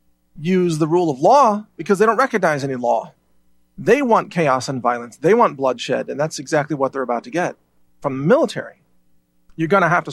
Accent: American